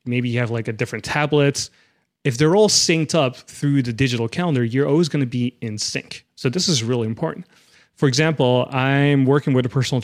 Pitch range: 125-150 Hz